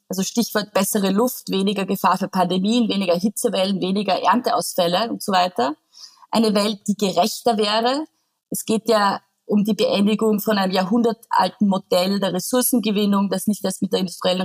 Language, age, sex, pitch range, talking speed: German, 30-49, female, 190-230 Hz, 160 wpm